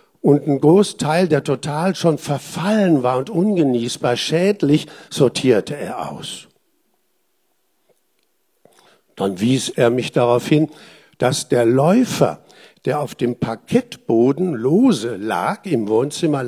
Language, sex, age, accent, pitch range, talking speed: German, male, 60-79, German, 130-210 Hz, 115 wpm